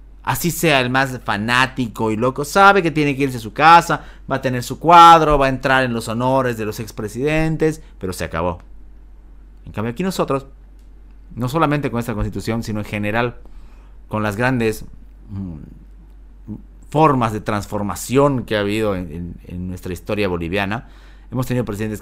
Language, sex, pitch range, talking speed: Spanish, male, 100-135 Hz, 165 wpm